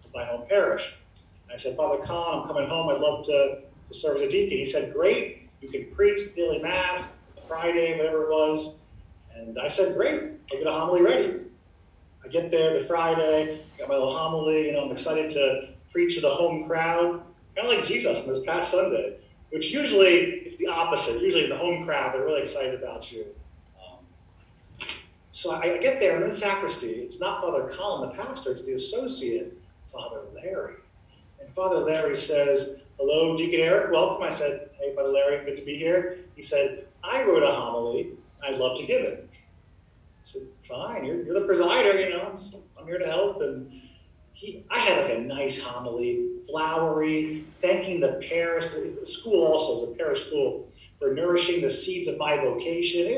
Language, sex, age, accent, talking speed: English, male, 40-59, American, 195 wpm